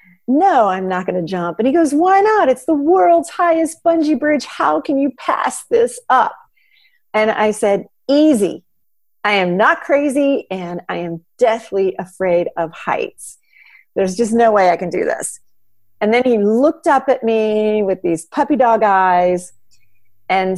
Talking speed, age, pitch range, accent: 170 wpm, 40-59, 180-270 Hz, American